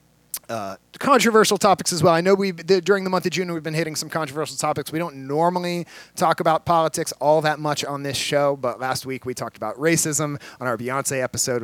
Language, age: English, 30-49